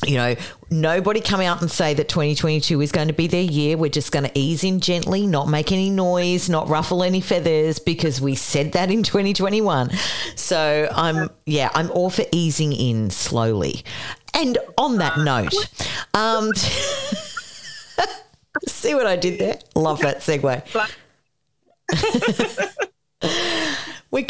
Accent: Australian